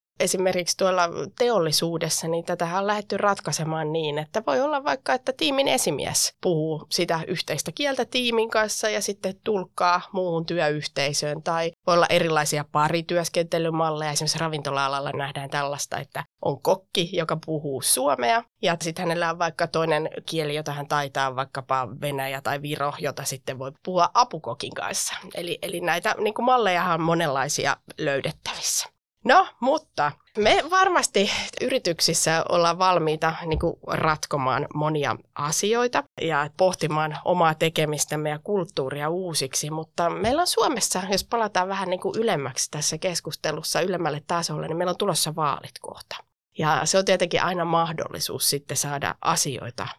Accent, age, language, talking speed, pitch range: native, 20-39, Finnish, 135 wpm, 150-190 Hz